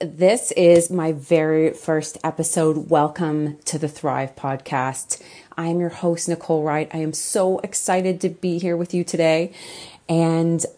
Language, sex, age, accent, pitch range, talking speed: English, female, 30-49, American, 145-175 Hz, 150 wpm